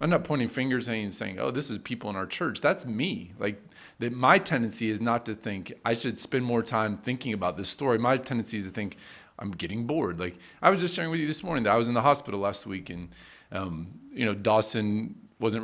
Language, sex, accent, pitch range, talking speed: English, male, American, 100-125 Hz, 240 wpm